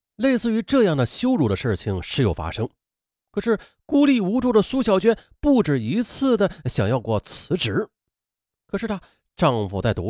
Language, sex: Chinese, male